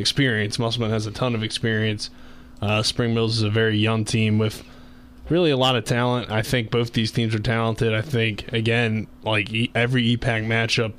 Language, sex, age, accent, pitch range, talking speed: English, male, 20-39, American, 110-120 Hz, 190 wpm